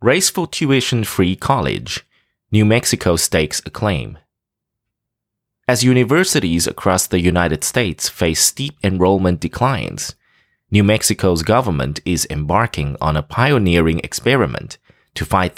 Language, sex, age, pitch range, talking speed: English, male, 20-39, 85-115 Hz, 110 wpm